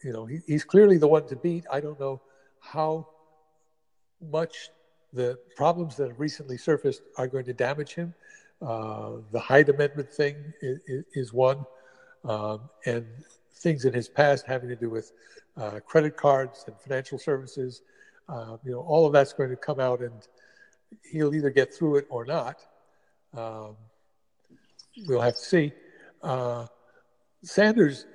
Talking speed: 155 wpm